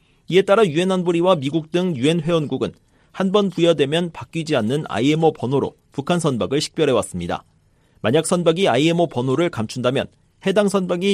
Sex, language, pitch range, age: male, Korean, 130-180 Hz, 40-59